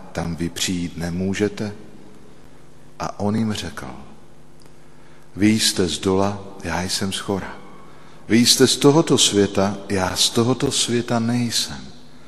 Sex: male